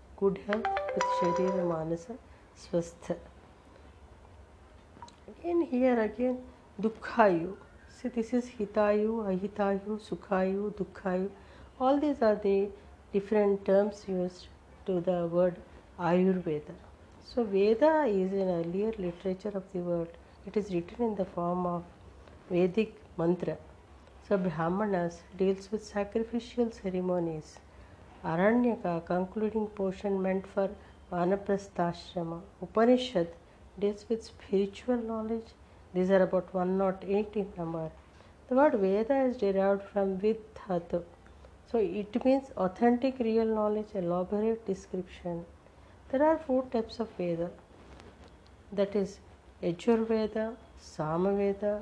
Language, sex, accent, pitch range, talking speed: English, female, Indian, 175-215 Hz, 110 wpm